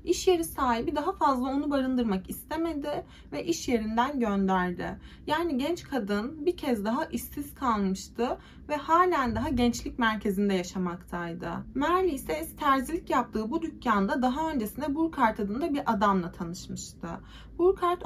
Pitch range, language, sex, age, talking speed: 220-315 Hz, Turkish, female, 30-49, 135 wpm